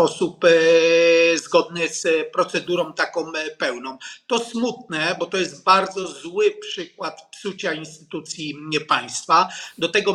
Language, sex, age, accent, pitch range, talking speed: Polish, male, 40-59, native, 160-195 Hz, 125 wpm